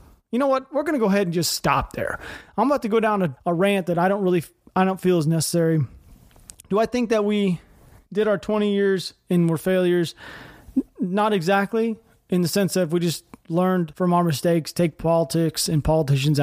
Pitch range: 155-195 Hz